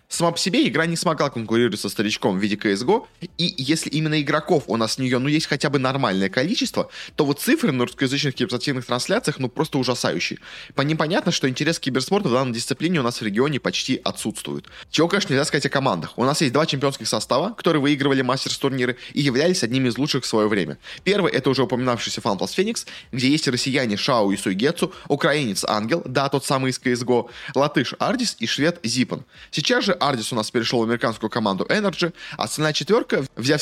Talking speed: 200 wpm